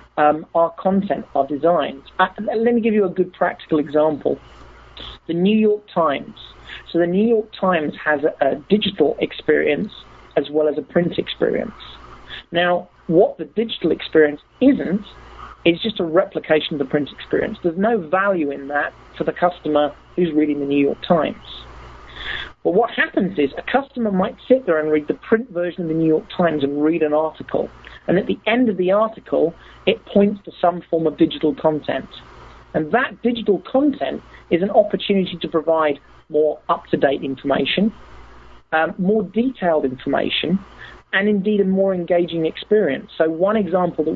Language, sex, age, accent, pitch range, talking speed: Spanish, male, 40-59, British, 150-195 Hz, 170 wpm